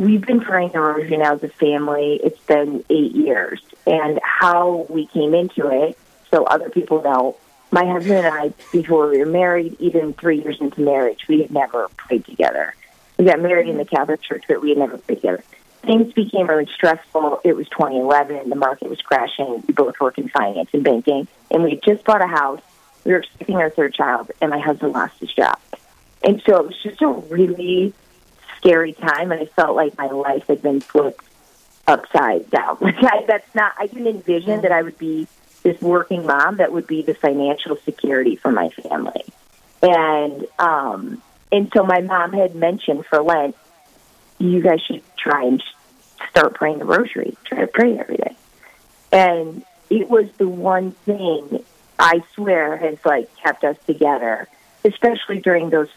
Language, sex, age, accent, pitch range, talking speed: English, female, 30-49, American, 150-185 Hz, 185 wpm